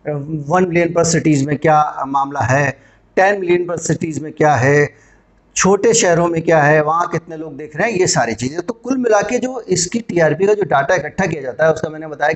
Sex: male